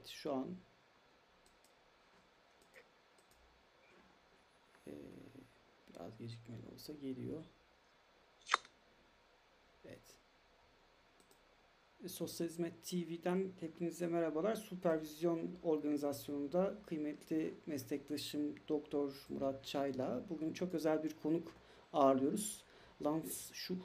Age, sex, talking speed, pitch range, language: 60-79, male, 65 wpm, 140-180 Hz, Turkish